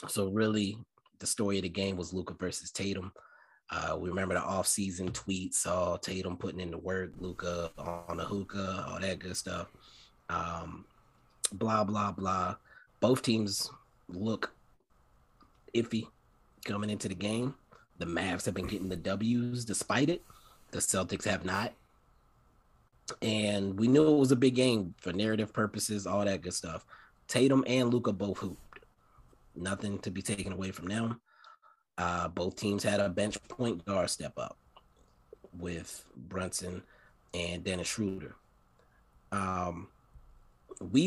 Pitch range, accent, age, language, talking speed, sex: 90-110 Hz, American, 30-49, English, 145 wpm, male